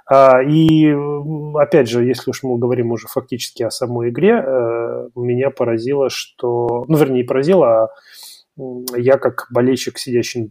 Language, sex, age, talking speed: Russian, male, 30-49, 130 wpm